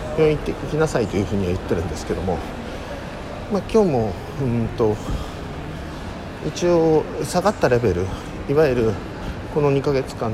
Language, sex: Japanese, male